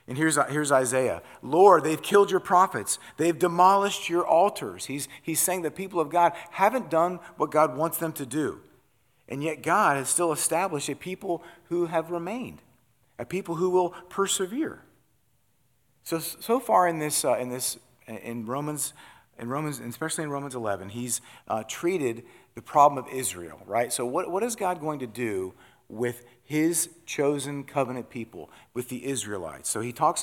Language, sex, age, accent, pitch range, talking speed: English, male, 40-59, American, 120-160 Hz, 175 wpm